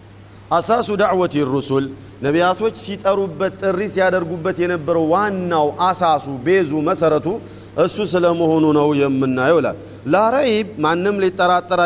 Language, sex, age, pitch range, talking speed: Amharic, male, 50-69, 135-185 Hz, 105 wpm